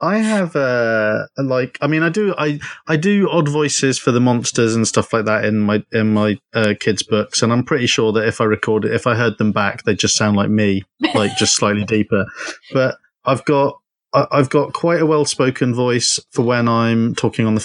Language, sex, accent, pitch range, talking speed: English, male, British, 110-135 Hz, 220 wpm